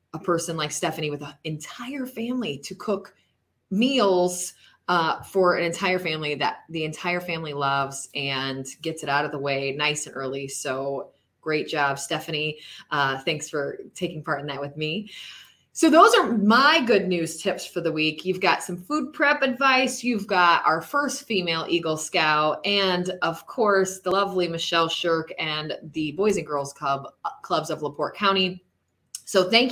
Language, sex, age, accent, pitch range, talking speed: English, female, 20-39, American, 160-225 Hz, 175 wpm